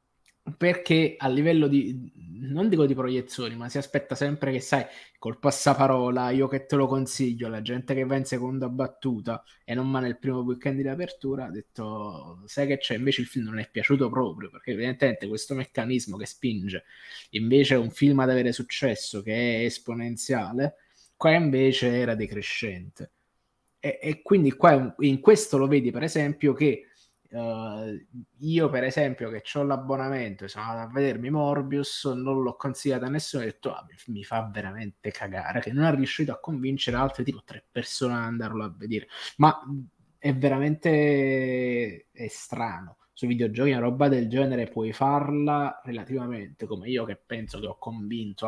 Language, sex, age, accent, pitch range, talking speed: Italian, male, 20-39, native, 115-140 Hz, 170 wpm